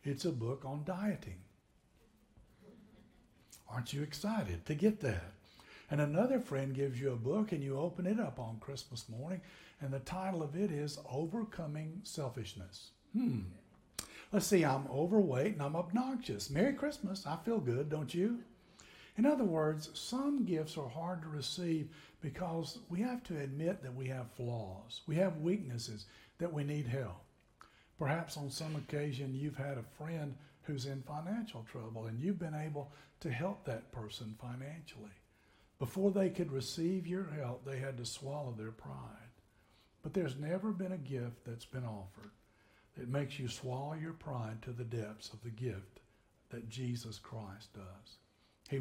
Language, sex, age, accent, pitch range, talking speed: English, male, 60-79, American, 115-165 Hz, 165 wpm